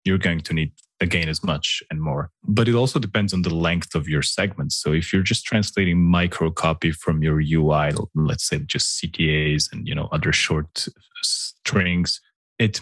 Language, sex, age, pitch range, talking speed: English, male, 20-39, 80-95 Hz, 185 wpm